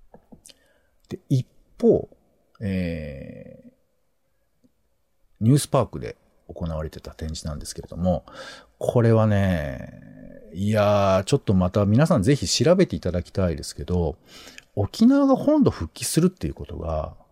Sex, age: male, 50-69